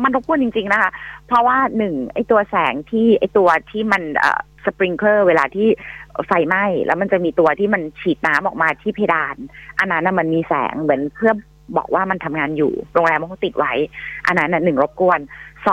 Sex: female